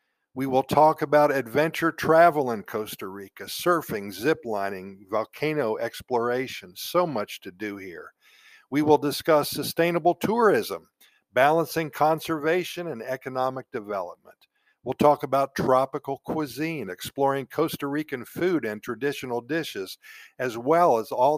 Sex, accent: male, American